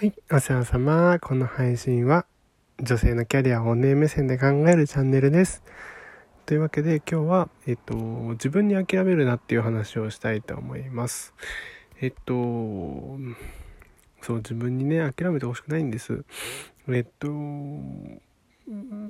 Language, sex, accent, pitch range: Japanese, male, native, 115-155 Hz